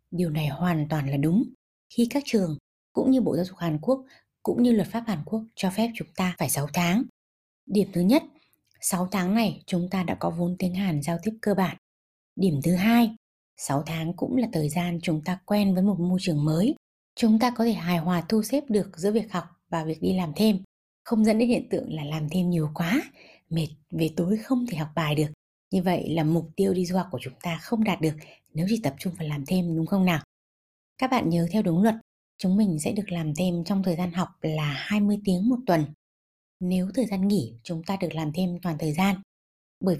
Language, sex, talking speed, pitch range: Vietnamese, female, 235 wpm, 165-220 Hz